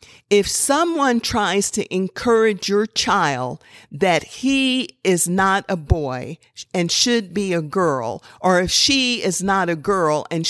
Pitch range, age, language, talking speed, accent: 160-210 Hz, 50-69, English, 150 wpm, American